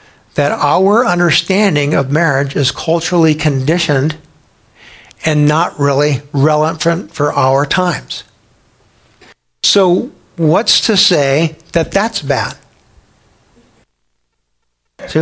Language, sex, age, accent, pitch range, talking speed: English, male, 60-79, American, 155-195 Hz, 90 wpm